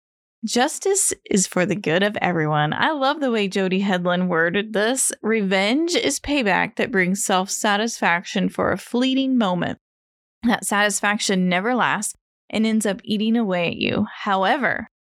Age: 10-29